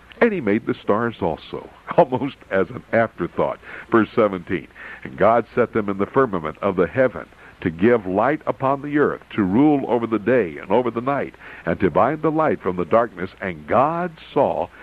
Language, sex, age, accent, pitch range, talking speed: English, male, 60-79, American, 105-155 Hz, 195 wpm